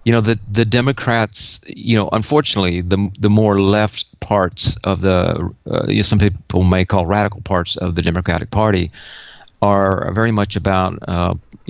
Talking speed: 170 wpm